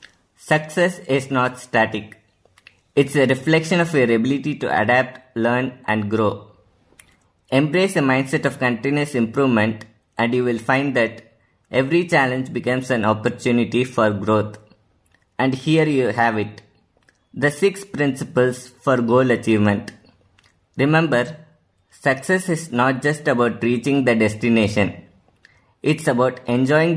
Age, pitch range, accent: 20-39, 110-140 Hz, Indian